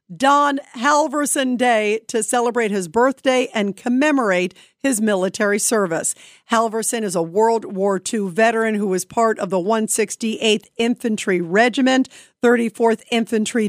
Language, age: English, 50-69